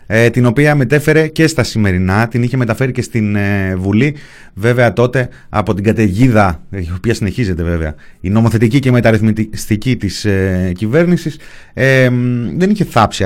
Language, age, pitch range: Greek, 30-49, 100-150 Hz